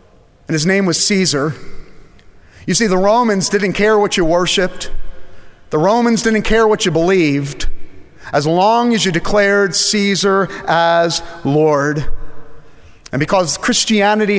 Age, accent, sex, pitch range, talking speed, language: 40-59, American, male, 145-200 Hz, 135 wpm, English